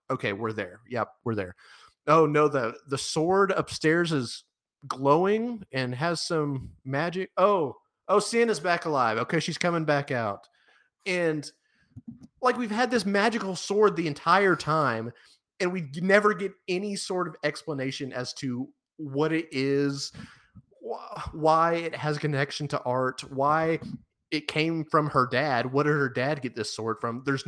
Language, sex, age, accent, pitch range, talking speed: English, male, 30-49, American, 125-175 Hz, 160 wpm